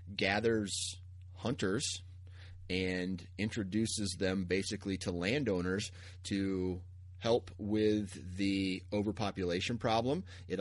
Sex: male